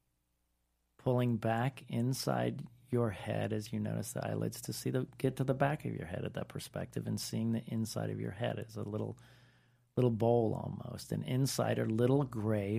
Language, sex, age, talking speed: English, male, 40-59, 190 wpm